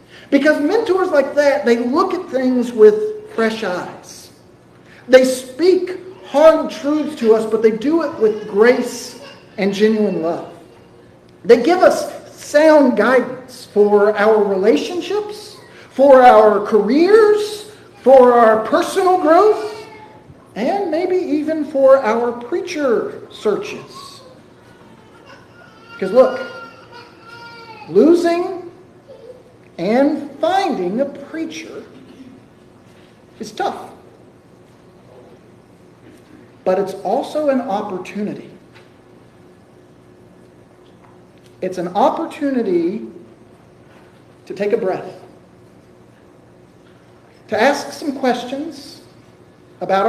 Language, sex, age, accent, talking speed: English, male, 40-59, American, 90 wpm